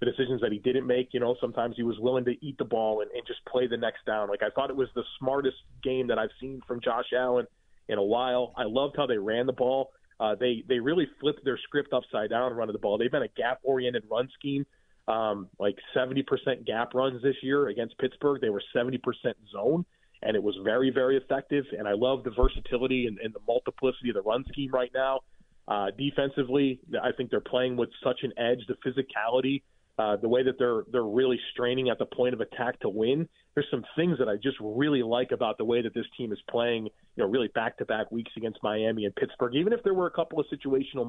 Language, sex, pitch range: English, male, 120-135 Hz